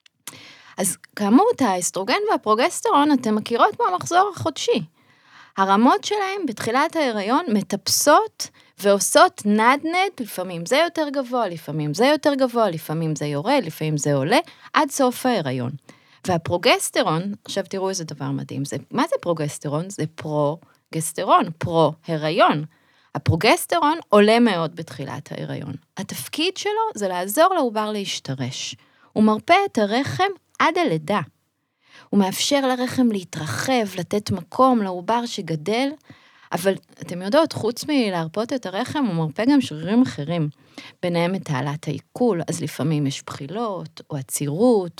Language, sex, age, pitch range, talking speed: Hebrew, female, 30-49, 155-255 Hz, 120 wpm